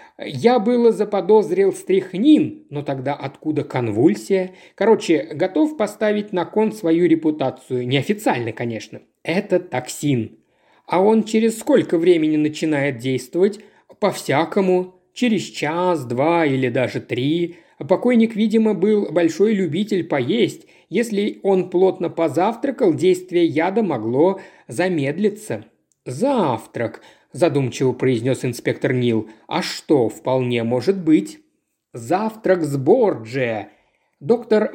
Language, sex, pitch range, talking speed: Russian, male, 145-210 Hz, 105 wpm